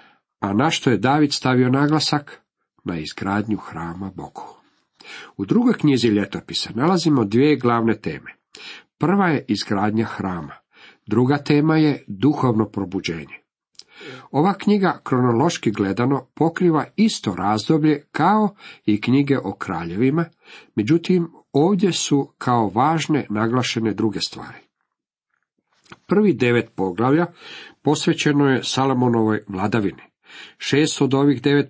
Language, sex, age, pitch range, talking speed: Croatian, male, 50-69, 110-145 Hz, 110 wpm